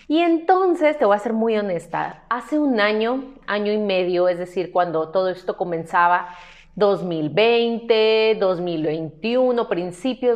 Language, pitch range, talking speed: Spanish, 175-215 Hz, 135 wpm